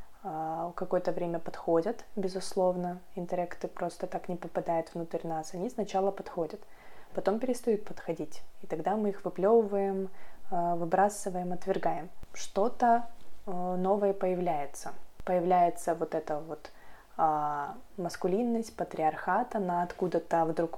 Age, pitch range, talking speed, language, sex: 20-39, 160-190 Hz, 105 wpm, Russian, female